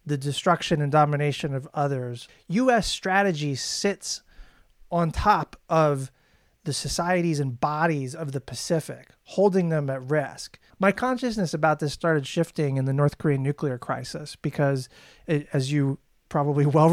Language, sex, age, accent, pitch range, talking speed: English, male, 30-49, American, 145-195 Hz, 140 wpm